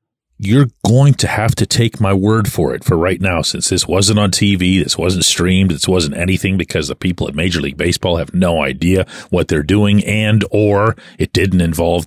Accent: American